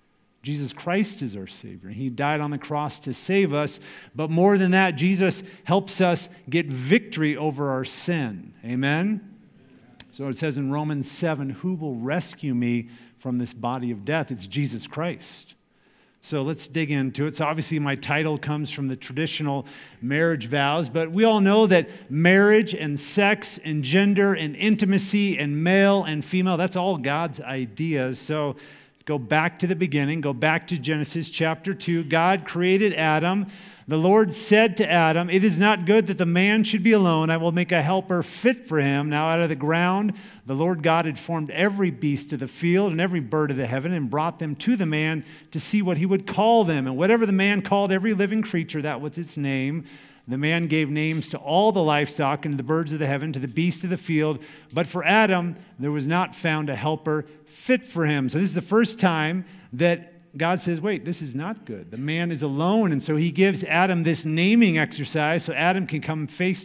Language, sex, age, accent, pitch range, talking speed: English, male, 50-69, American, 145-185 Hz, 205 wpm